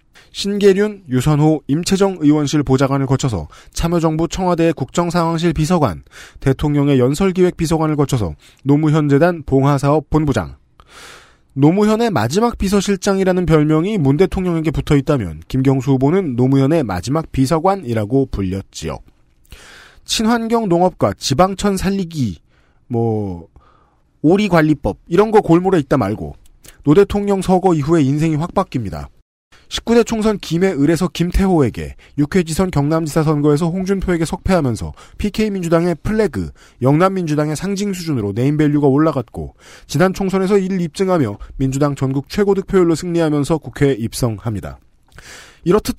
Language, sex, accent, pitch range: Korean, male, native, 135-190 Hz